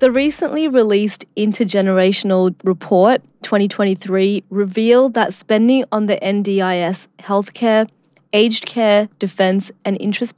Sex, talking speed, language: female, 105 wpm, English